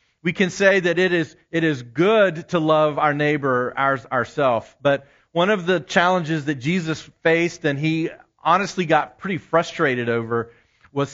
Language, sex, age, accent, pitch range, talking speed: English, male, 40-59, American, 130-175 Hz, 165 wpm